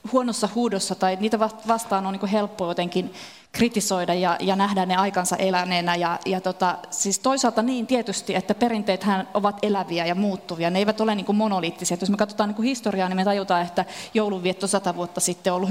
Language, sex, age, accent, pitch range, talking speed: Finnish, female, 30-49, native, 190-225 Hz, 180 wpm